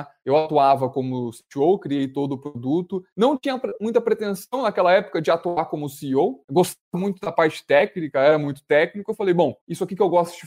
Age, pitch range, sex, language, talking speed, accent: 20-39, 145-185 Hz, male, Portuguese, 205 wpm, Brazilian